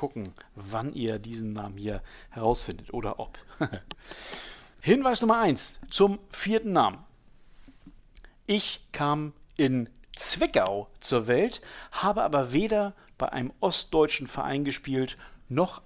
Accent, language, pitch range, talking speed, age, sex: German, German, 115-170 Hz, 115 wpm, 60-79, male